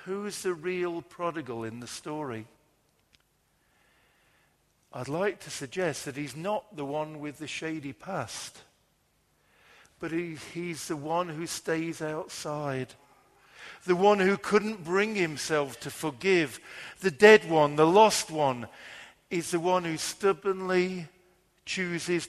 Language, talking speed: English, 125 wpm